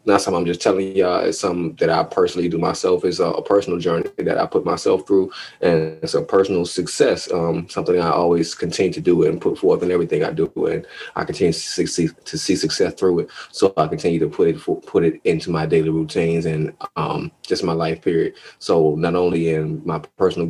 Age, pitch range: 20-39, 80-90 Hz